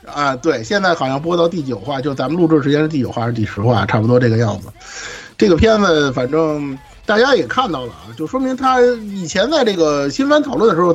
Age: 50-69